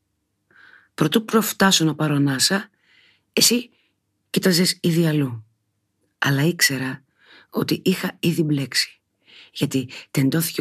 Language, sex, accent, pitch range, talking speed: Greek, female, native, 115-170 Hz, 90 wpm